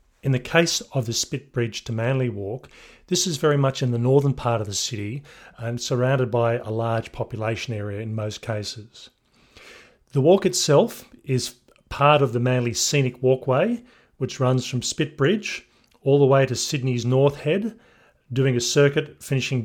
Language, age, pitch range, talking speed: English, 40-59, 120-145 Hz, 175 wpm